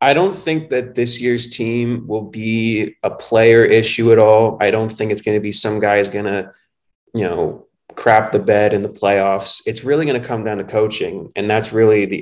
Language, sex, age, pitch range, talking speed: English, male, 20-39, 95-110 Hz, 220 wpm